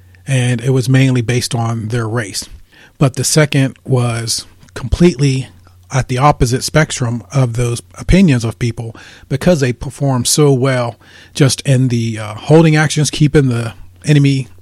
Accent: American